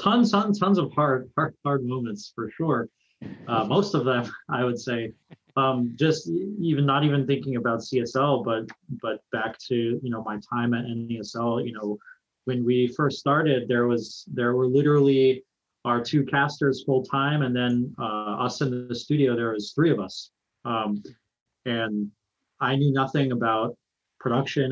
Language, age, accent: English, 30-49, American